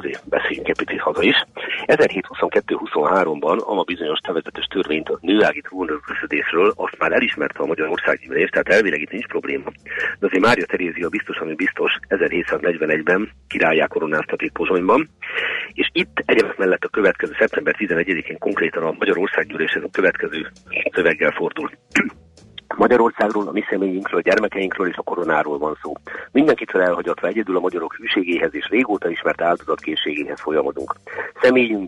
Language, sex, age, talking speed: Hungarian, male, 50-69, 140 wpm